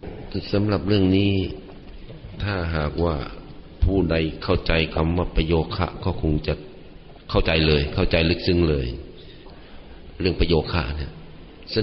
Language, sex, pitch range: Thai, male, 85-105 Hz